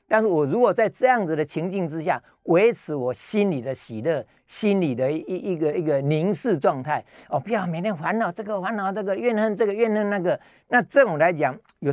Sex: male